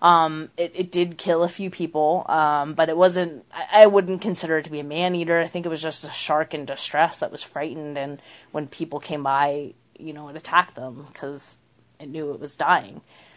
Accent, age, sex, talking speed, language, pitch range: American, 20-39, female, 225 wpm, English, 140-175 Hz